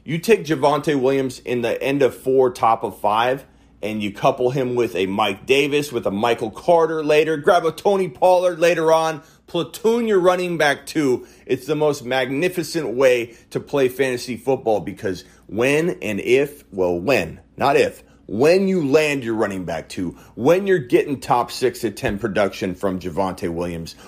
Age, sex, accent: 30-49, male, American